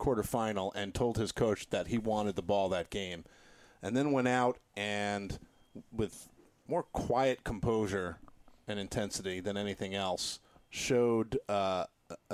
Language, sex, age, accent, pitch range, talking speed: English, male, 40-59, American, 105-125 Hz, 135 wpm